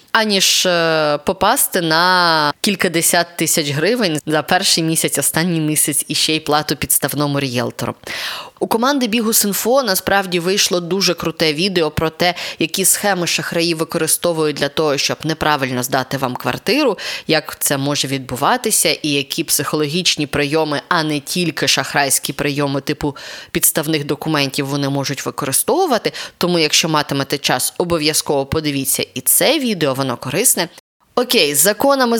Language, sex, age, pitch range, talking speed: Ukrainian, female, 20-39, 150-190 Hz, 130 wpm